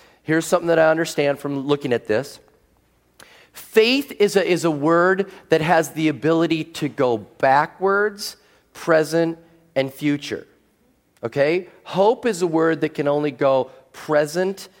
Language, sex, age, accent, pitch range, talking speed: English, male, 30-49, American, 140-185 Hz, 140 wpm